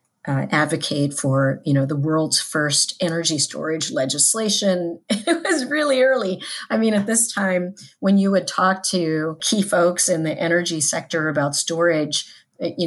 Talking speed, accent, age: 160 wpm, American, 40-59